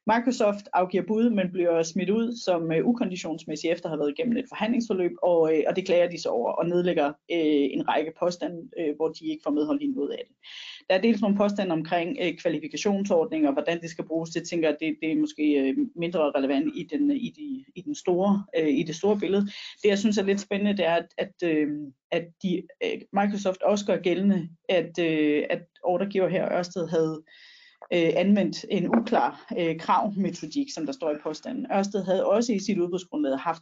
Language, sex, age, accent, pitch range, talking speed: Danish, female, 30-49, native, 160-215 Hz, 205 wpm